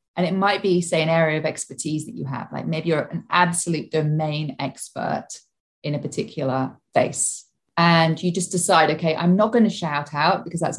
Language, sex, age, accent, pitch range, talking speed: English, female, 30-49, British, 150-185 Hz, 200 wpm